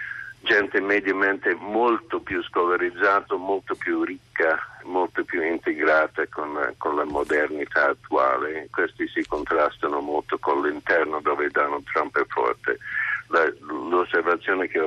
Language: Italian